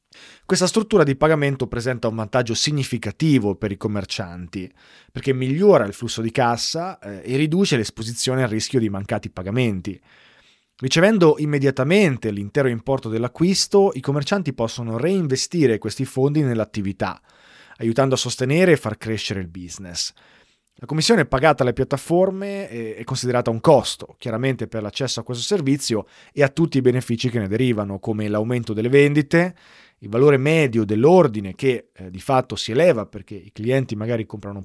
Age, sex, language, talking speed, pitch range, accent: 30-49, male, Italian, 150 wpm, 110-145 Hz, native